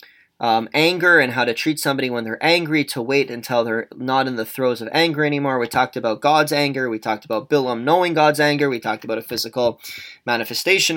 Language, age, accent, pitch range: English, 20-39, American, 115-140 Hz